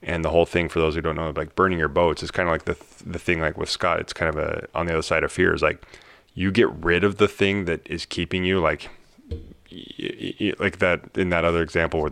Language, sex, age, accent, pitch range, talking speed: English, male, 30-49, American, 80-90 Hz, 275 wpm